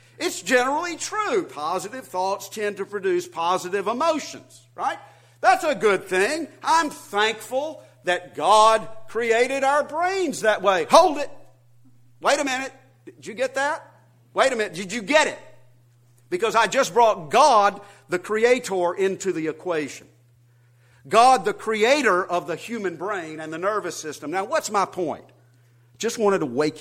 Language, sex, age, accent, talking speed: English, male, 50-69, American, 155 wpm